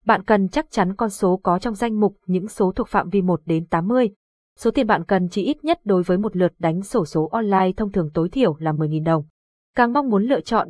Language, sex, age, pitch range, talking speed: Vietnamese, female, 20-39, 185-230 Hz, 250 wpm